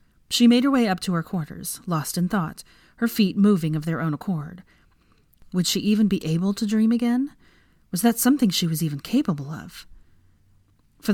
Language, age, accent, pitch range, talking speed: English, 30-49, American, 160-220 Hz, 190 wpm